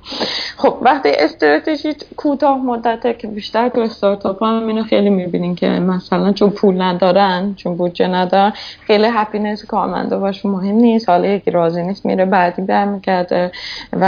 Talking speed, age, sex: 150 wpm, 20-39, female